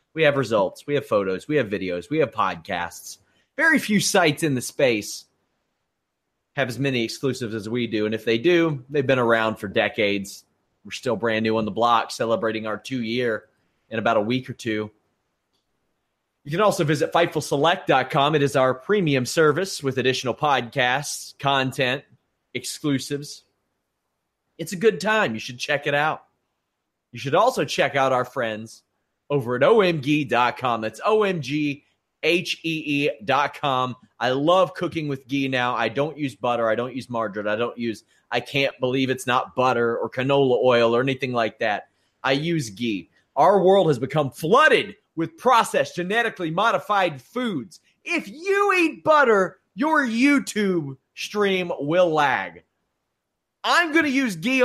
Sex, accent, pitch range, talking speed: male, American, 120-175 Hz, 155 wpm